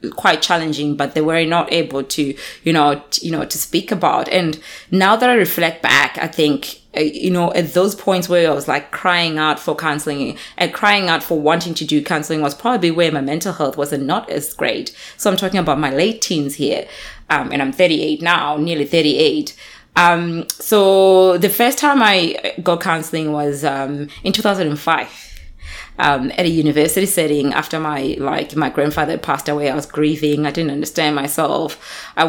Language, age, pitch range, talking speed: English, 20-39, 150-180 Hz, 190 wpm